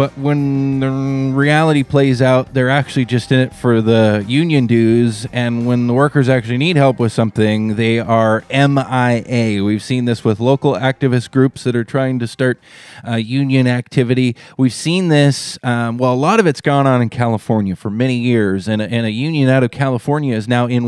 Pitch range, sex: 120-140 Hz, male